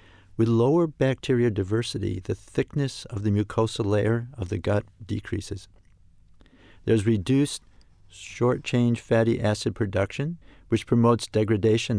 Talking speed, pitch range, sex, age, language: 120 wpm, 95-120 Hz, male, 50-69, English